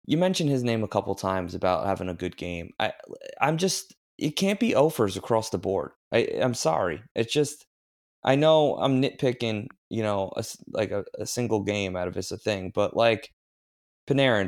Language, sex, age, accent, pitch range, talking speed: English, male, 20-39, American, 100-145 Hz, 200 wpm